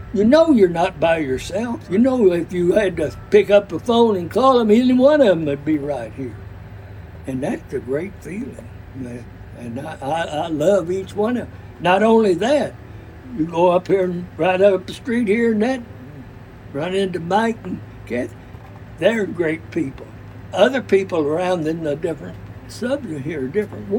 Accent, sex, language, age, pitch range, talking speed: American, male, English, 60-79, 125-200 Hz, 185 wpm